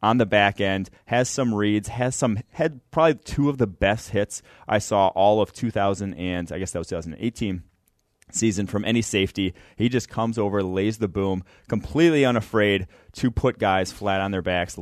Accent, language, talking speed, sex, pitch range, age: American, English, 190 wpm, male, 95-110 Hz, 30-49